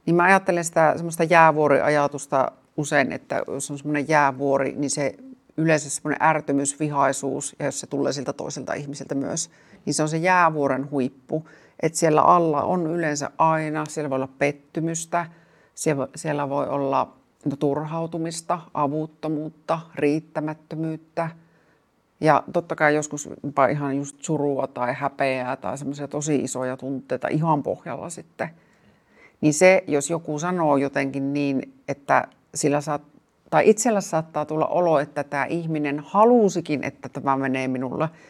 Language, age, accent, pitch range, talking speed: Finnish, 50-69, native, 140-160 Hz, 140 wpm